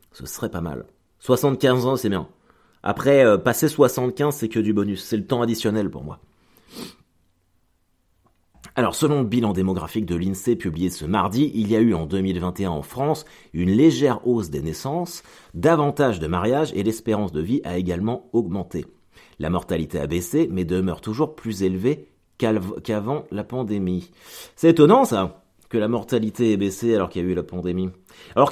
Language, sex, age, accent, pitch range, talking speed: French, male, 30-49, French, 90-120 Hz, 175 wpm